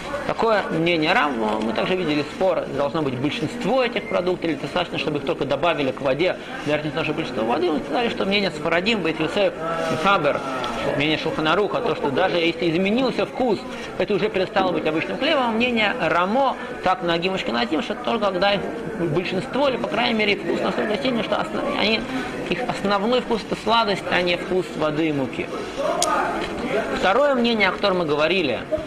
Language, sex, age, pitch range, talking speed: Russian, male, 20-39, 160-230 Hz, 175 wpm